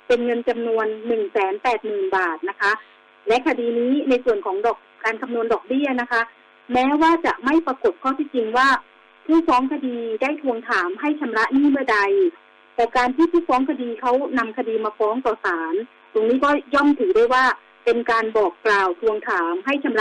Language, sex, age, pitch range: Thai, female, 30-49, 225-285 Hz